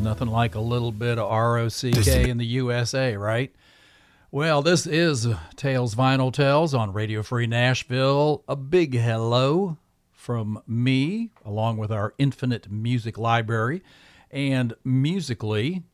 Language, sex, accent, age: English, male, American, 50-69